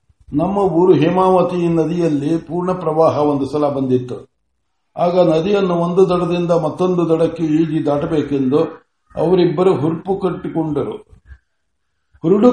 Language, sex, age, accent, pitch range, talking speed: Kannada, male, 60-79, native, 150-190 Hz, 100 wpm